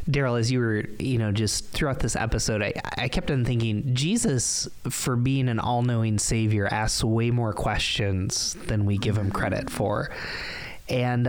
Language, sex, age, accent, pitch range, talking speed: English, male, 20-39, American, 105-130 Hz, 170 wpm